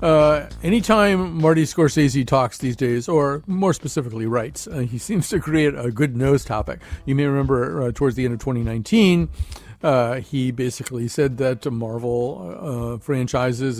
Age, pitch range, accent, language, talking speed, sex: 50-69, 120-155 Hz, American, English, 160 wpm, male